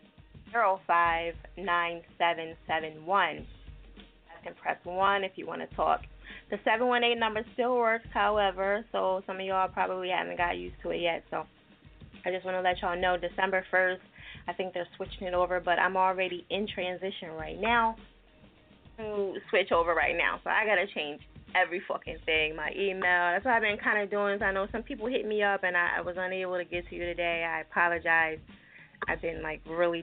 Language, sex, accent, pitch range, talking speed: English, female, American, 175-210 Hz, 190 wpm